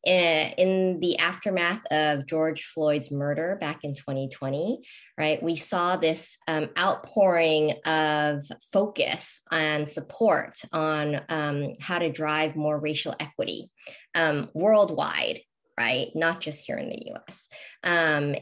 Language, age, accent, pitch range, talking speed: English, 20-39, American, 150-180 Hz, 125 wpm